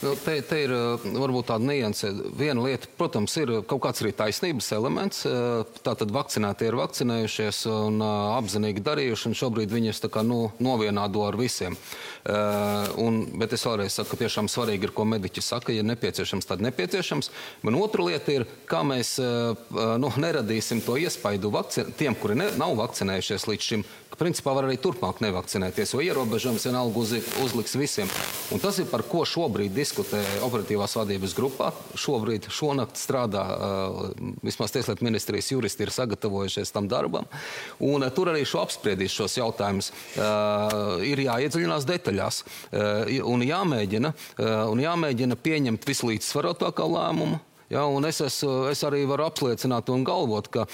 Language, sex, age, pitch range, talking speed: English, male, 30-49, 105-130 Hz, 155 wpm